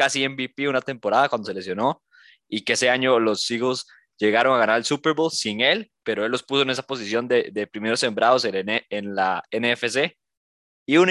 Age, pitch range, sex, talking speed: 20-39, 120-150 Hz, male, 200 wpm